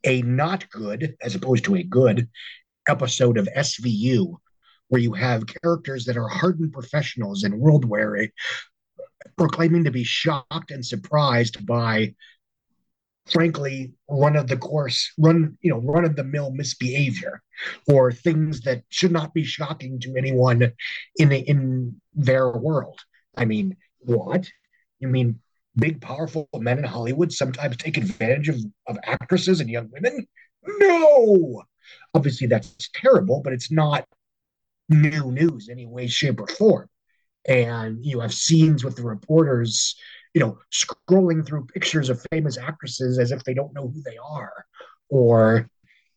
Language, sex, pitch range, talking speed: English, male, 125-160 Hz, 145 wpm